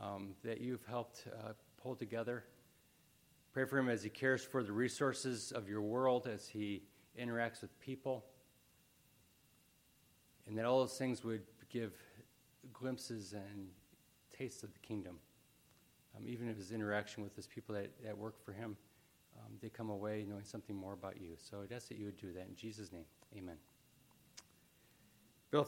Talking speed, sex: 170 wpm, male